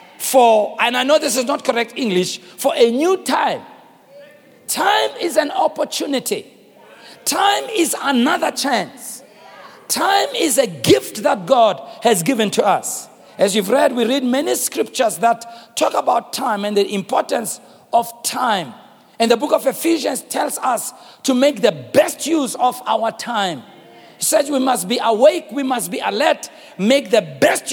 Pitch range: 230-310 Hz